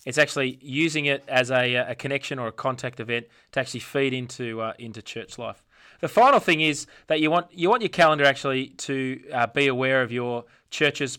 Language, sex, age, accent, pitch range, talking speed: English, male, 20-39, Australian, 120-140 Hz, 210 wpm